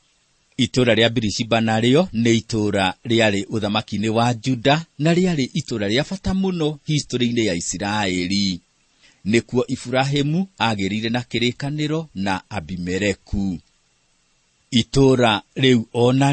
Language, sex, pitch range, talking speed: English, male, 110-145 Hz, 105 wpm